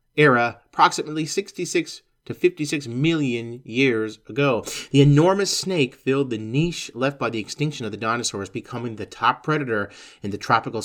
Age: 30-49